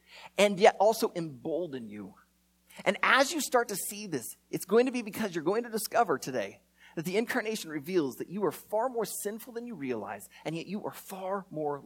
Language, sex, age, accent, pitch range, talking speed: English, male, 30-49, American, 120-180 Hz, 205 wpm